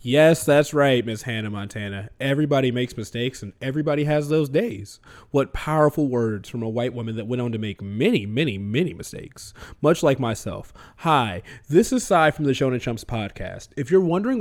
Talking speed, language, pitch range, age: 185 wpm, English, 125-190 Hz, 20-39